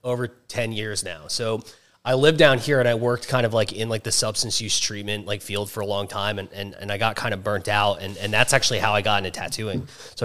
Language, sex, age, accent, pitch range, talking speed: English, male, 20-39, American, 105-125 Hz, 270 wpm